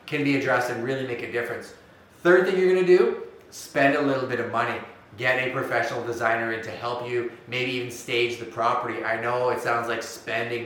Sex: male